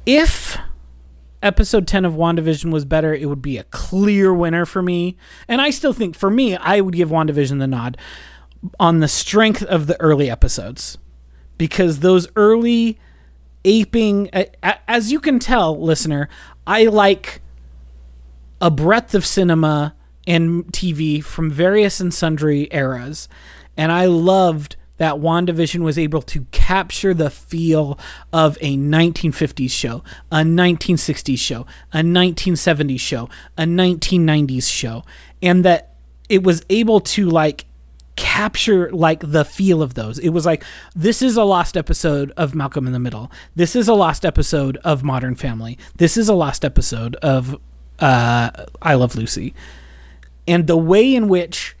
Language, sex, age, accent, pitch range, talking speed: English, male, 30-49, American, 130-180 Hz, 150 wpm